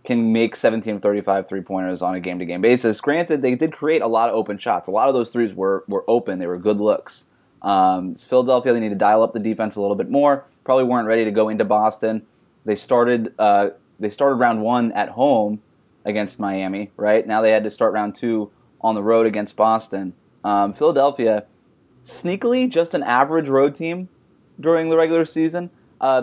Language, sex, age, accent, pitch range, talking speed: English, male, 20-39, American, 105-130 Hz, 195 wpm